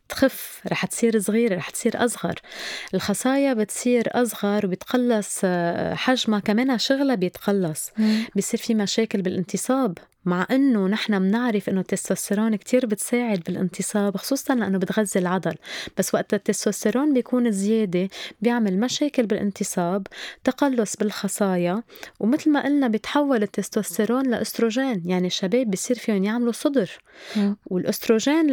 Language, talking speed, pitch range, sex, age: Arabic, 115 wpm, 195-235 Hz, female, 20-39